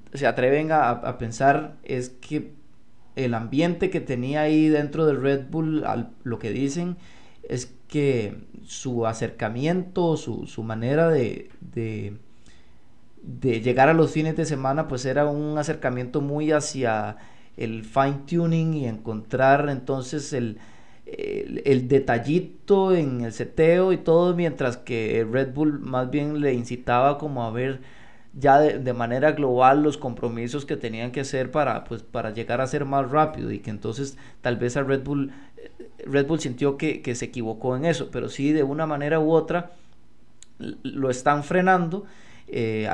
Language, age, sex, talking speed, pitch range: Spanish, 30-49, male, 160 wpm, 120-150 Hz